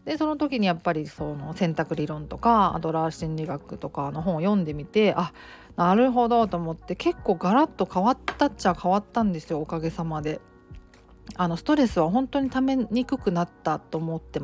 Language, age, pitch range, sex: Japanese, 40-59, 165-215 Hz, female